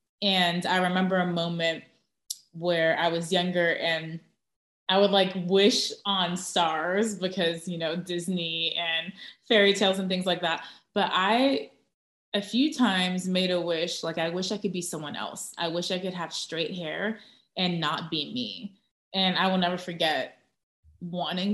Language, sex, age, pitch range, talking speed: English, female, 20-39, 165-195 Hz, 165 wpm